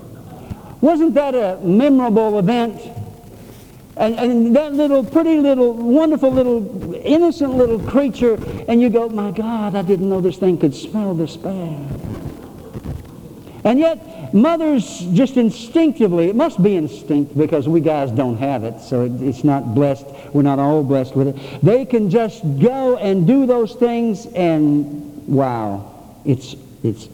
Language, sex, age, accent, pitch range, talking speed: English, male, 60-79, American, 110-185 Hz, 150 wpm